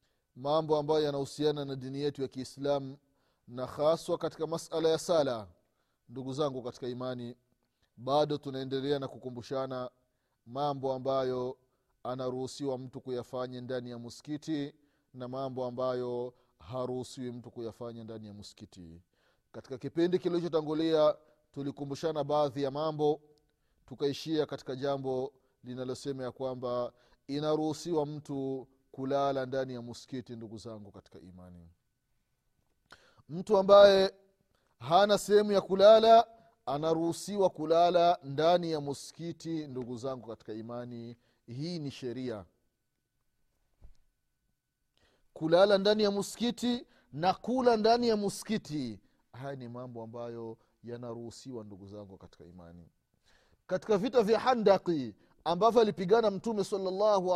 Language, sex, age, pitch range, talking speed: Swahili, male, 30-49, 125-165 Hz, 110 wpm